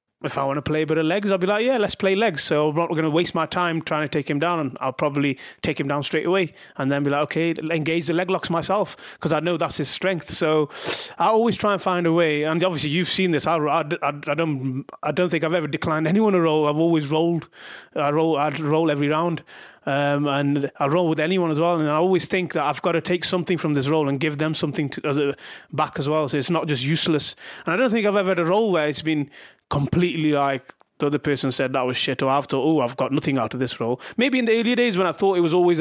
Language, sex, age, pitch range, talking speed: English, male, 30-49, 145-170 Hz, 280 wpm